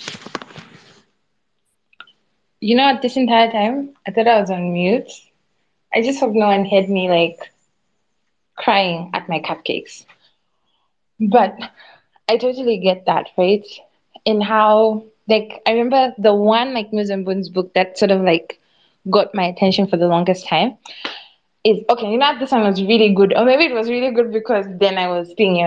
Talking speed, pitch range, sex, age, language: 175 wpm, 185-230 Hz, female, 20-39, English